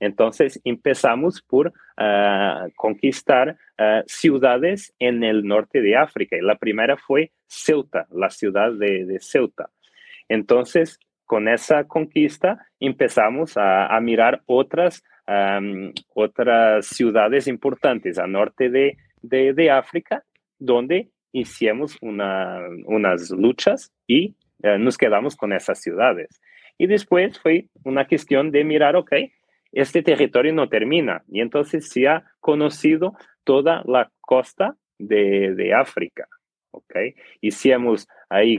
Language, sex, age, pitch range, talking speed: Spanish, male, 30-49, 105-155 Hz, 120 wpm